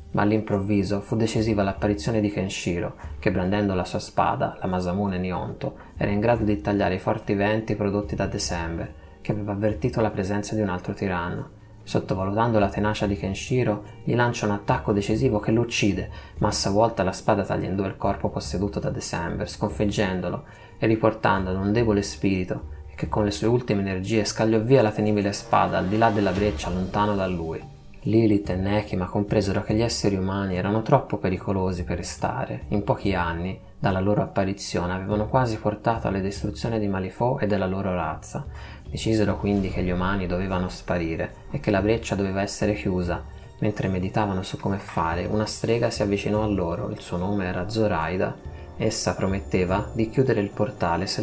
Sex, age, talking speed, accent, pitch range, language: male, 20-39, 180 wpm, native, 95-110 Hz, Italian